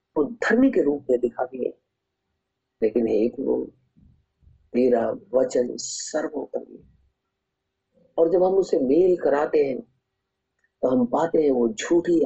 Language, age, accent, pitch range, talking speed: Hindi, 50-69, native, 95-140 Hz, 125 wpm